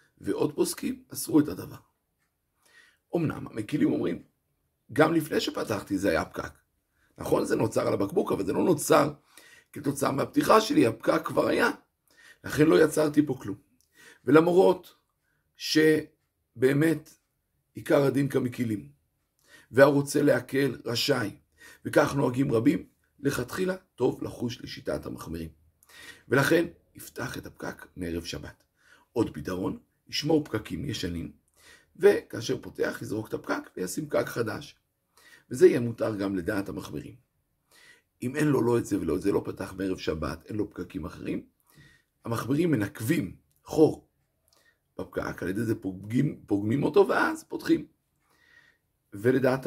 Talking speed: 125 wpm